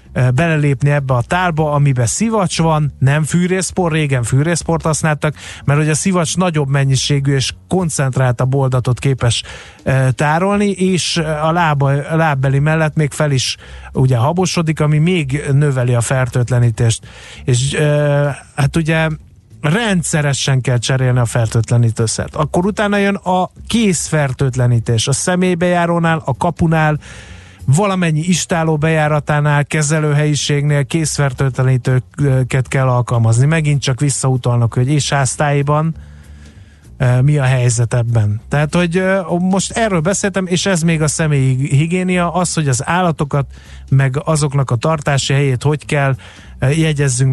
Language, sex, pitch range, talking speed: Hungarian, male, 125-160 Hz, 120 wpm